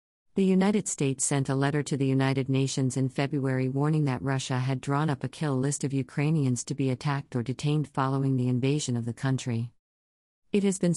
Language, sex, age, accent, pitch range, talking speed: English, female, 50-69, American, 130-155 Hz, 200 wpm